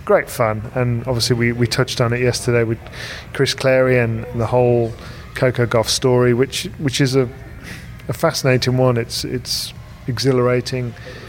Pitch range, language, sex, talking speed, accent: 115-130 Hz, English, male, 155 wpm, British